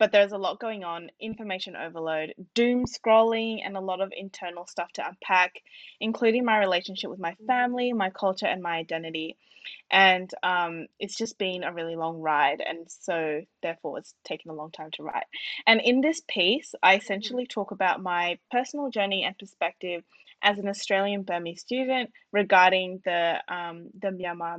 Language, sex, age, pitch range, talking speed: English, female, 10-29, 170-210 Hz, 175 wpm